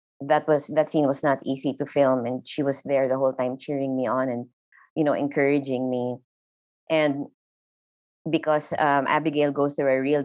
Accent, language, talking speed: Filipino, English, 185 wpm